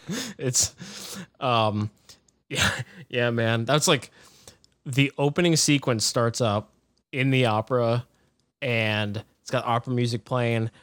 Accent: American